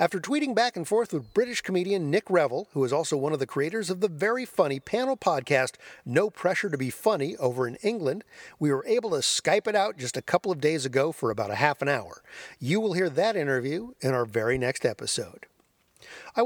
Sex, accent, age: male, American, 50-69